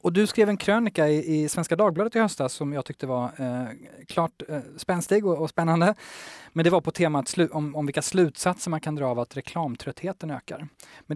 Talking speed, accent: 210 wpm, native